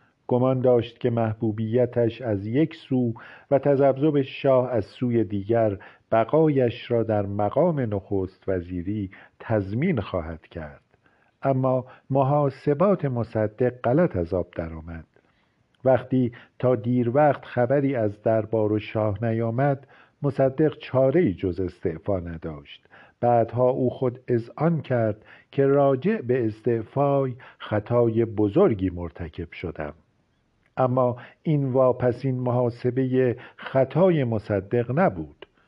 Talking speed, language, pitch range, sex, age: 110 wpm, Persian, 110-135 Hz, male, 50-69